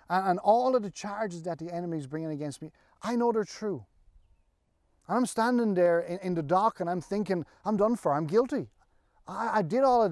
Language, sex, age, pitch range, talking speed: English, male, 30-49, 120-185 Hz, 220 wpm